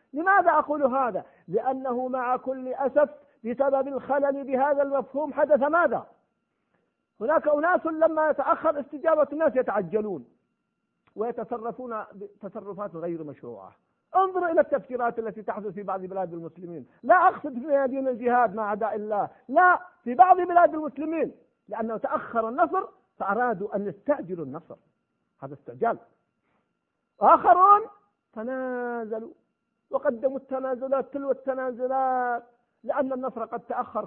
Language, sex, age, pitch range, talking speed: Arabic, male, 50-69, 225-305 Hz, 115 wpm